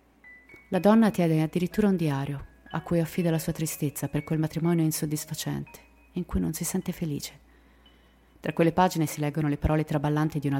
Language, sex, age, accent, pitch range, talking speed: Italian, female, 30-49, native, 150-180 Hz, 180 wpm